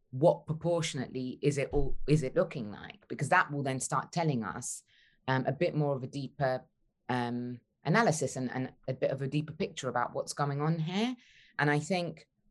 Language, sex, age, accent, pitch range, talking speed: English, female, 20-39, British, 125-150 Hz, 185 wpm